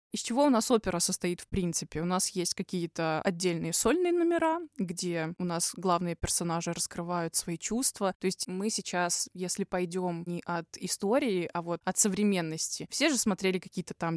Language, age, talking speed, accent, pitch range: Russian, 20-39, 175 wpm, native, 175-215 Hz